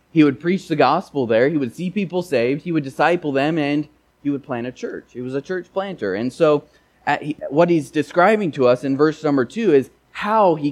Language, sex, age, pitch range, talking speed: English, male, 20-39, 110-155 Hz, 235 wpm